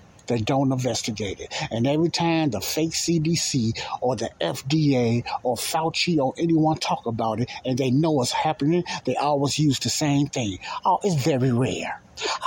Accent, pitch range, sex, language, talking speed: American, 120-170 Hz, male, English, 175 wpm